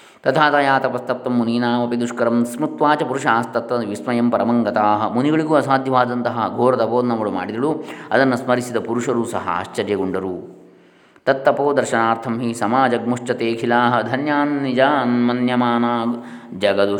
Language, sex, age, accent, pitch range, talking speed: Kannada, male, 20-39, native, 110-125 Hz, 90 wpm